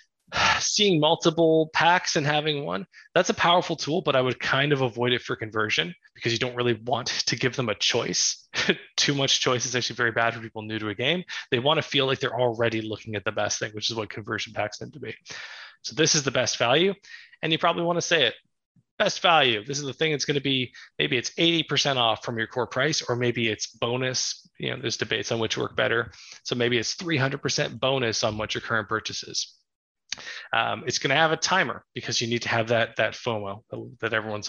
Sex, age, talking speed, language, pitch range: male, 20-39, 230 wpm, English, 115-155 Hz